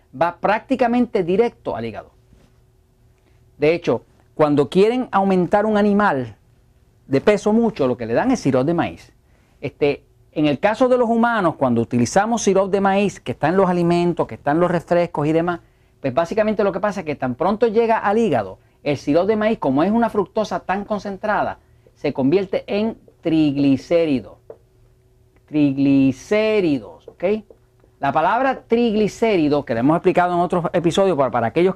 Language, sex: Spanish, male